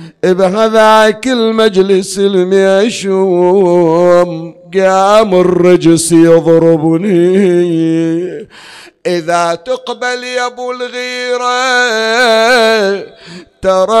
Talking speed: 50 wpm